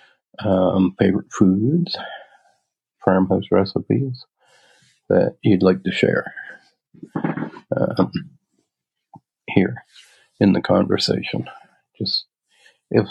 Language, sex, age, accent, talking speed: English, male, 40-59, American, 80 wpm